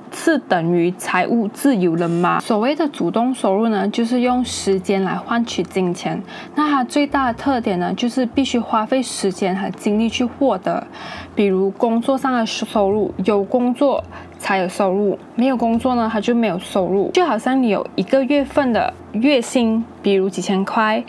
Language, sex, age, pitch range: Chinese, female, 10-29, 195-260 Hz